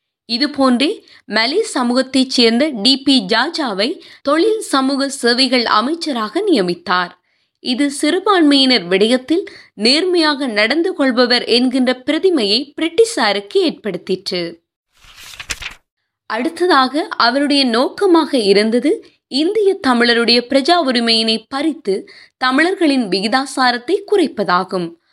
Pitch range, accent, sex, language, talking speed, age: 235-330 Hz, native, female, Tamil, 80 wpm, 20-39